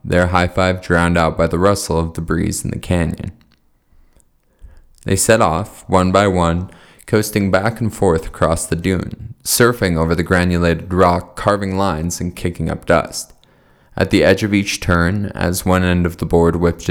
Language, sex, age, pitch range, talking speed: English, male, 20-39, 85-95 Hz, 175 wpm